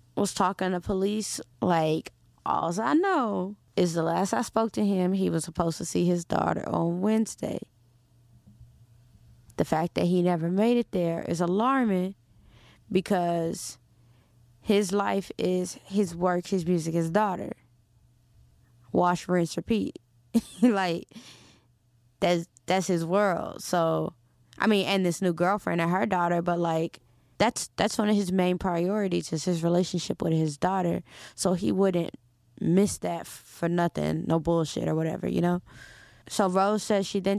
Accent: American